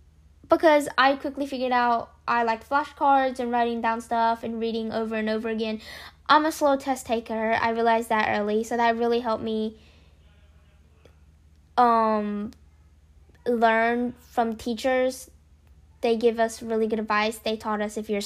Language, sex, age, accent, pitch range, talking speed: English, female, 10-29, American, 200-260 Hz, 155 wpm